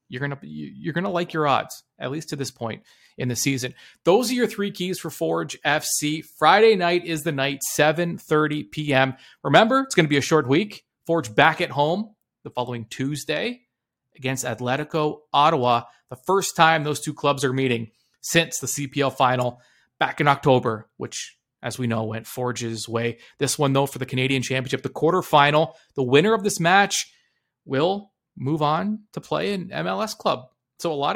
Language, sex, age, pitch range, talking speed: English, male, 30-49, 130-170 Hz, 185 wpm